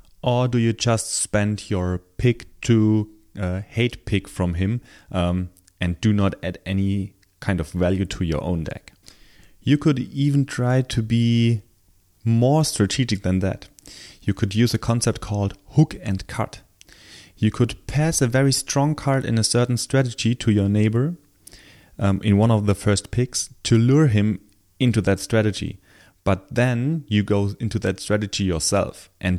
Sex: male